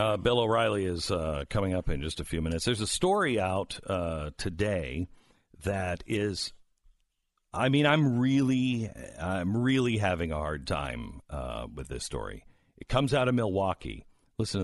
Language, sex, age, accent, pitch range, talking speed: English, male, 50-69, American, 85-120 Hz, 165 wpm